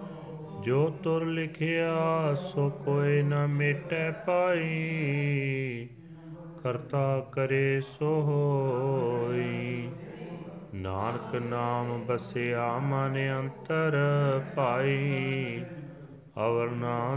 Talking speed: 65 wpm